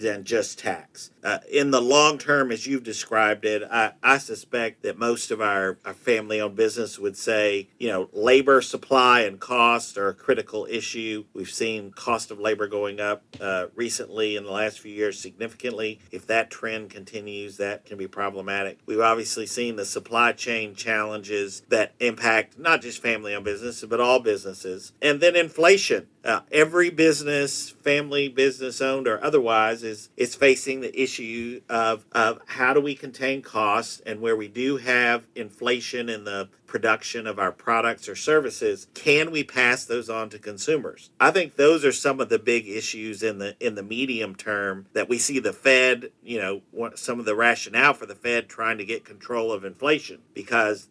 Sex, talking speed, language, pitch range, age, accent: male, 180 wpm, English, 105-130 Hz, 50-69, American